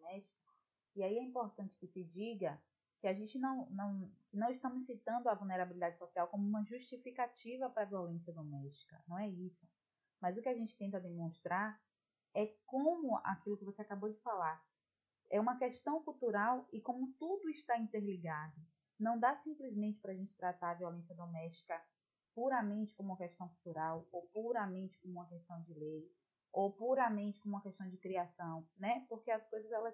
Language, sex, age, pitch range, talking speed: Portuguese, female, 20-39, 180-230 Hz, 170 wpm